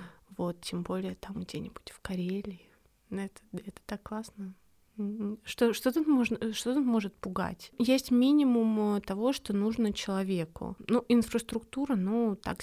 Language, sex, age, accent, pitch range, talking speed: Russian, female, 20-39, native, 180-225 Hz, 140 wpm